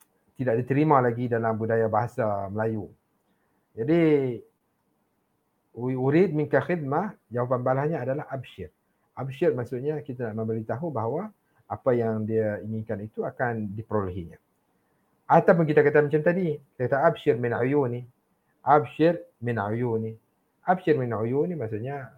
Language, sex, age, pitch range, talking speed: English, male, 50-69, 115-150 Hz, 130 wpm